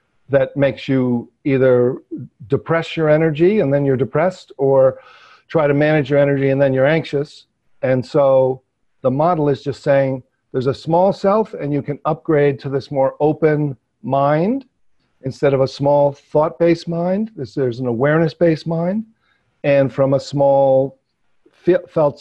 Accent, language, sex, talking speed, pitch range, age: American, English, male, 150 wpm, 130-150 Hz, 50-69